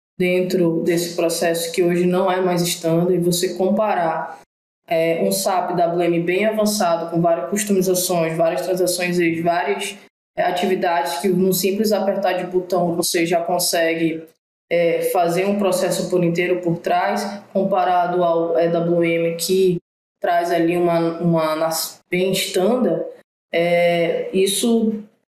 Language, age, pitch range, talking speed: Portuguese, 20-39, 175-205 Hz, 135 wpm